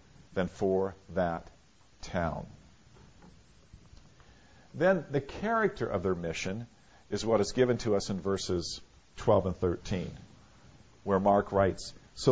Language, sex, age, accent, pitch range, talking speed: English, male, 50-69, American, 100-135 Hz, 120 wpm